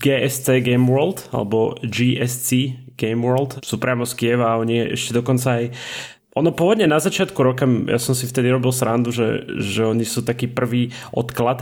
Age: 20-39